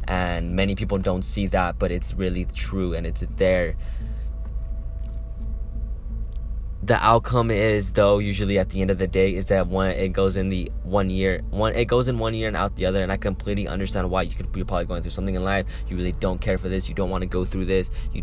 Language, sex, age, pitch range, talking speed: English, male, 20-39, 90-105 Hz, 235 wpm